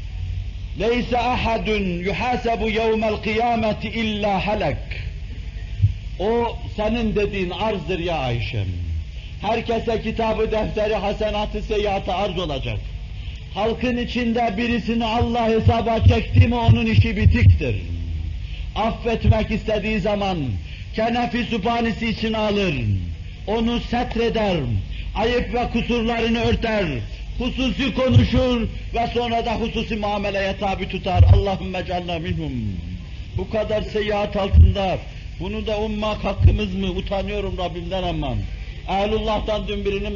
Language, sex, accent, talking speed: Turkish, male, native, 105 wpm